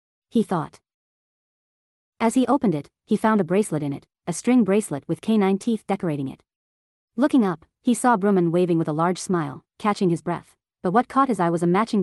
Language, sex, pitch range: English, female, 170-215 Hz